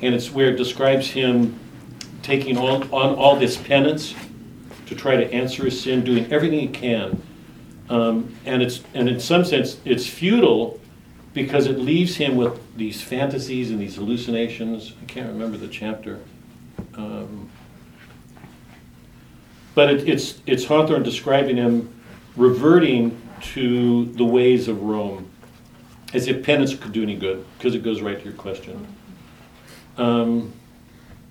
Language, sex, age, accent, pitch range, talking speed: English, male, 60-79, American, 115-135 Hz, 145 wpm